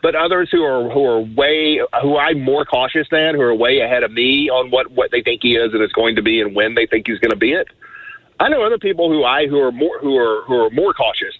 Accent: American